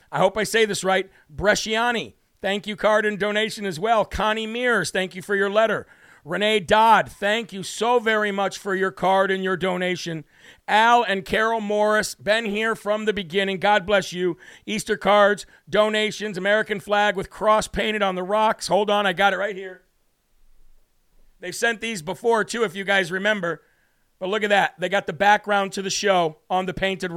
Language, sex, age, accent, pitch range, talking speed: English, male, 50-69, American, 190-215 Hz, 190 wpm